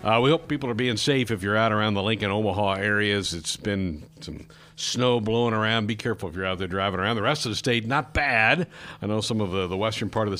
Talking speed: 265 wpm